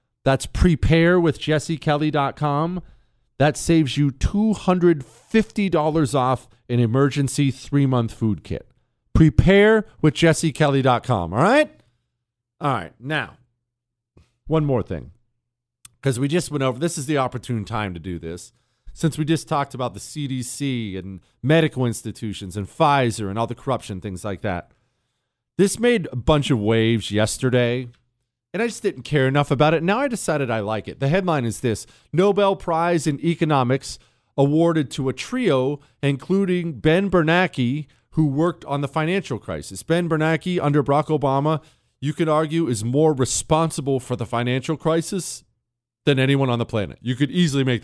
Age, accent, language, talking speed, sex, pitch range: 40-59, American, English, 150 wpm, male, 120-160 Hz